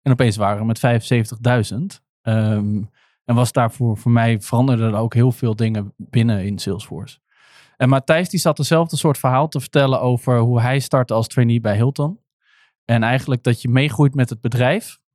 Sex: male